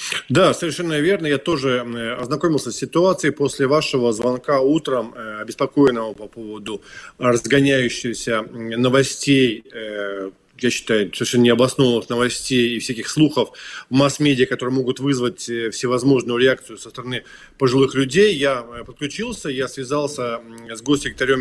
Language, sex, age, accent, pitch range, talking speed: Russian, male, 20-39, native, 125-155 Hz, 120 wpm